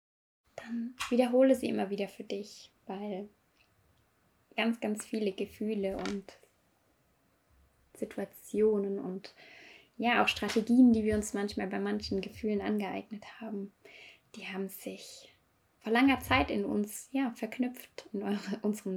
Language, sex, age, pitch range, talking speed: German, female, 20-39, 200-235 Hz, 125 wpm